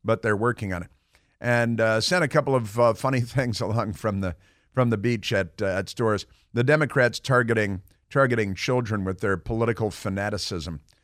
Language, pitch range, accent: English, 105-135 Hz, American